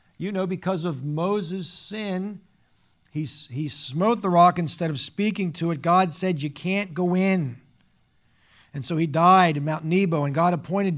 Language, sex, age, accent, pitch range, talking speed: English, male, 50-69, American, 150-195 Hz, 175 wpm